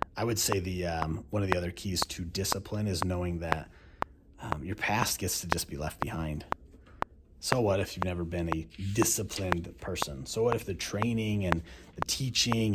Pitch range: 85-100 Hz